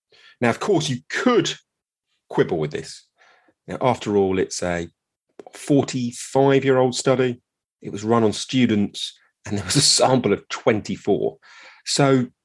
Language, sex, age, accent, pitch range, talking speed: English, male, 30-49, British, 100-125 Hz, 130 wpm